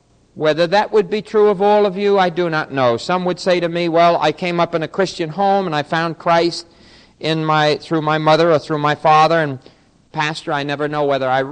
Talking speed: 240 wpm